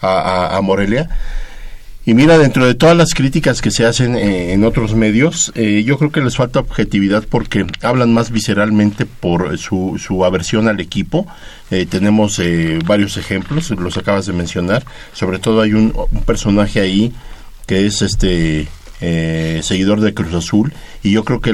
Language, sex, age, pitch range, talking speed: Spanish, male, 50-69, 95-120 Hz, 175 wpm